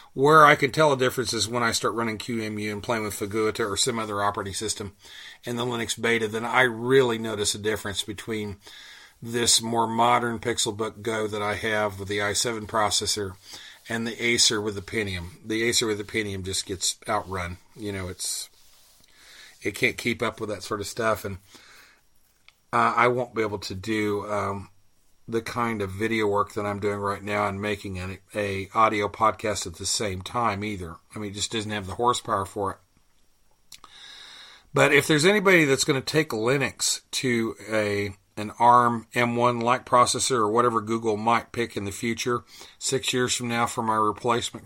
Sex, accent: male, American